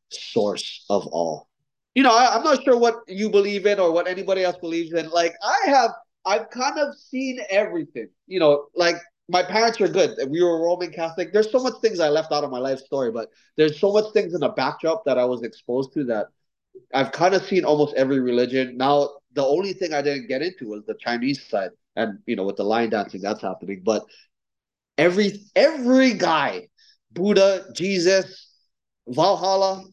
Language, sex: English, male